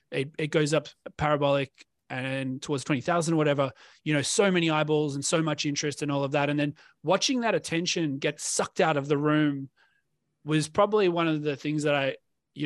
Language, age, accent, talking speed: English, 30-49, Australian, 205 wpm